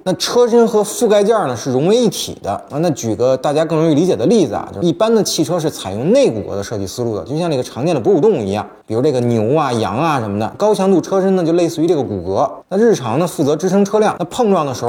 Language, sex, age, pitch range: Chinese, male, 20-39, 125-200 Hz